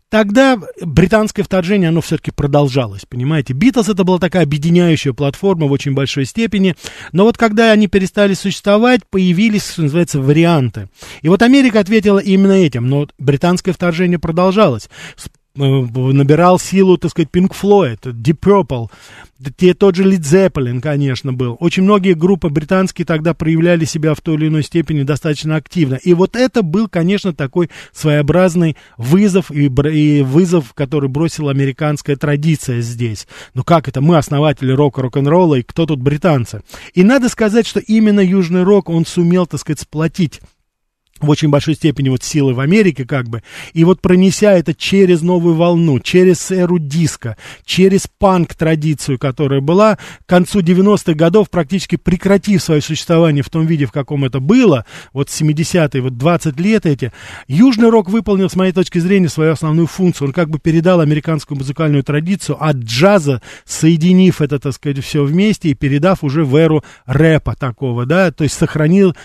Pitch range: 145-185 Hz